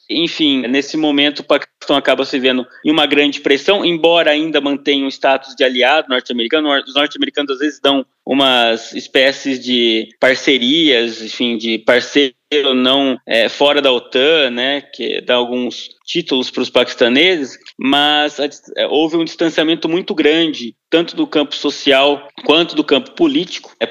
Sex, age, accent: male, 20-39, Brazilian